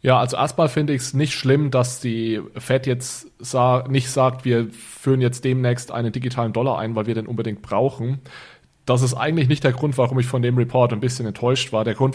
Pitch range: 115-130 Hz